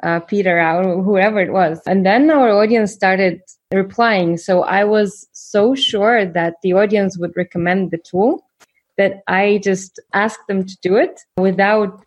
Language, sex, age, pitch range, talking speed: English, female, 20-39, 180-205 Hz, 165 wpm